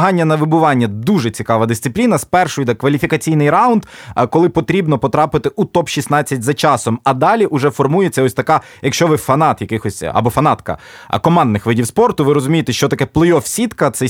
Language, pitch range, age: Ukrainian, 130-165 Hz, 20-39